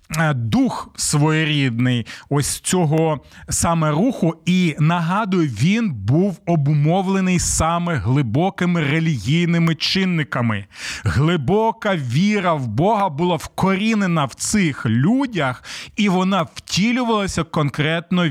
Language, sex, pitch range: Ukrainian, male, 135-195 Hz